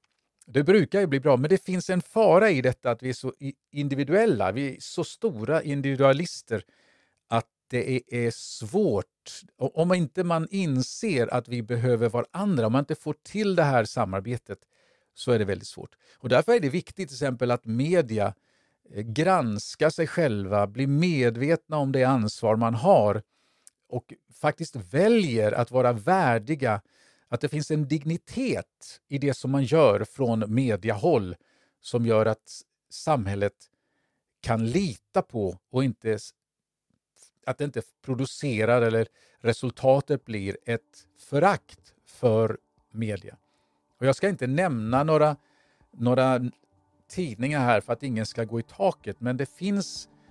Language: Swedish